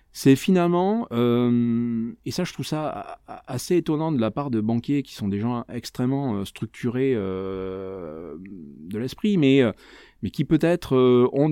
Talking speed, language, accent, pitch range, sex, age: 150 wpm, French, French, 100-125 Hz, male, 30-49